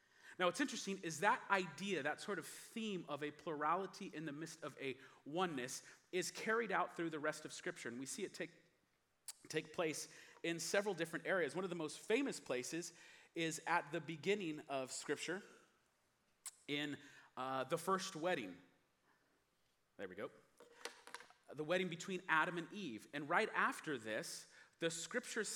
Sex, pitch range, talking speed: male, 145-190 Hz, 165 wpm